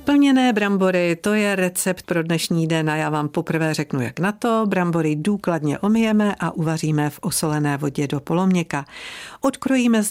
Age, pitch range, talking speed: 50-69, 160-205 Hz, 165 wpm